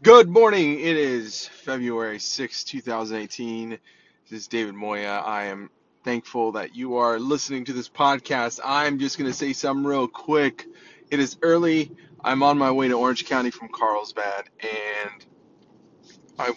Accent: American